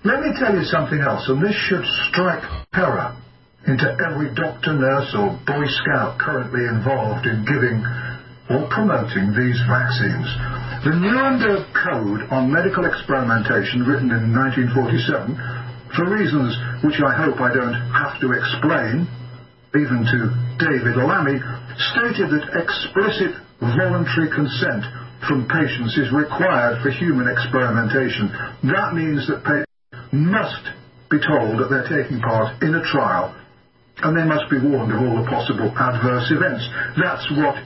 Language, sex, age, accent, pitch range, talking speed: English, male, 50-69, British, 125-155 Hz, 140 wpm